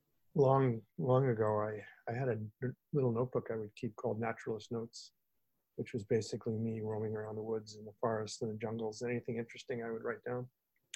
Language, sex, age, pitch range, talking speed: English, male, 50-69, 110-120 Hz, 190 wpm